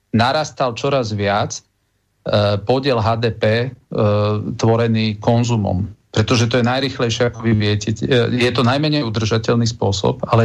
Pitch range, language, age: 105-120 Hz, Slovak, 40-59